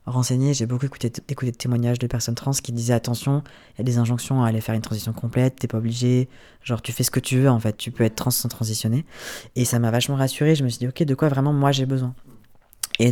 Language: French